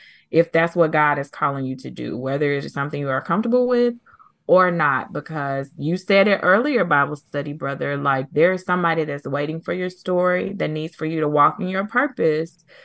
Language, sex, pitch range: English, female, 140-185 Hz